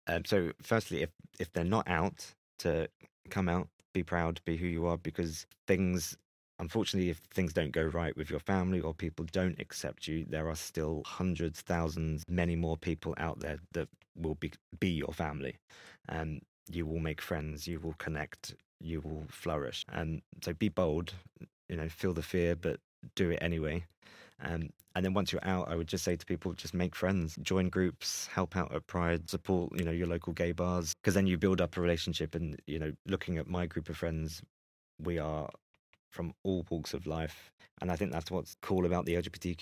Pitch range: 80-90 Hz